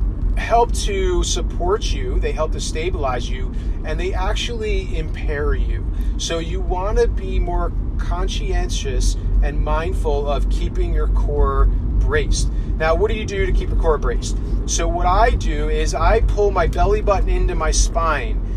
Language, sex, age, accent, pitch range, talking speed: English, male, 30-49, American, 155-215 Hz, 165 wpm